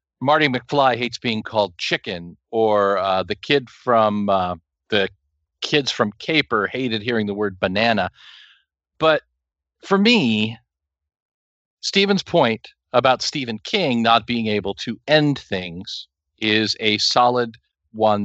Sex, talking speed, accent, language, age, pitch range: male, 130 wpm, American, English, 50-69, 100-125 Hz